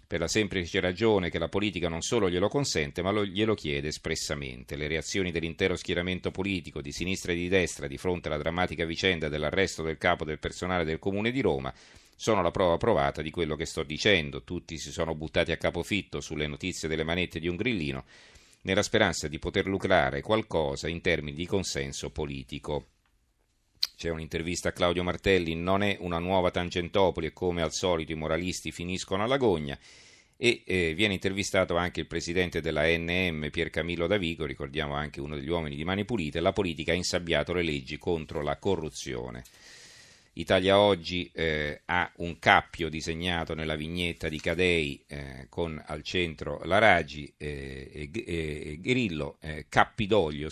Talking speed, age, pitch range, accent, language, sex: 170 wpm, 40-59, 75-90 Hz, native, Italian, male